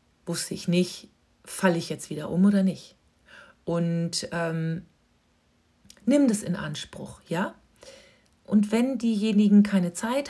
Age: 40-59